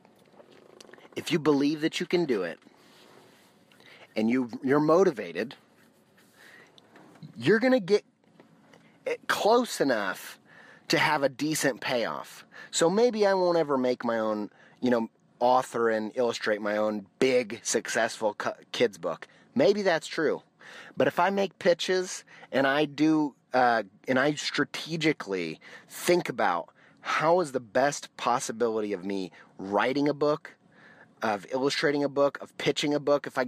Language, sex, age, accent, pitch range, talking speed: English, male, 30-49, American, 125-165 Hz, 140 wpm